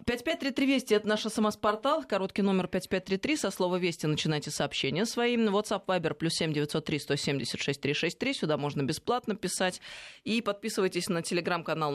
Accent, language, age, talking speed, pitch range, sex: native, Russian, 20-39, 130 wpm, 150-210 Hz, female